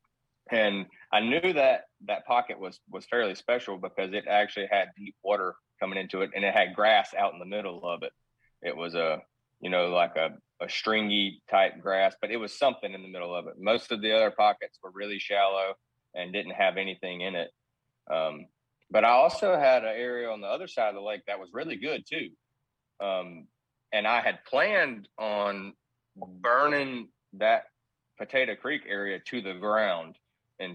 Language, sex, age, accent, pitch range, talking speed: English, male, 30-49, American, 95-120 Hz, 190 wpm